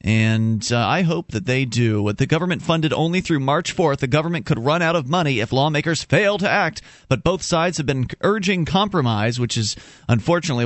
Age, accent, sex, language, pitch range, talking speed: 30-49, American, male, English, 115-155 Hz, 210 wpm